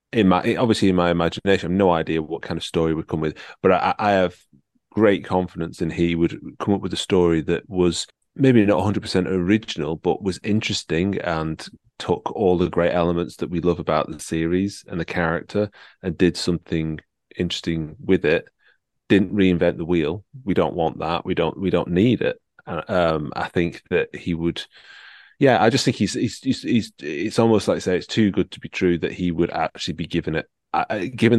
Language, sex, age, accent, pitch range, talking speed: English, male, 30-49, British, 80-100 Hz, 205 wpm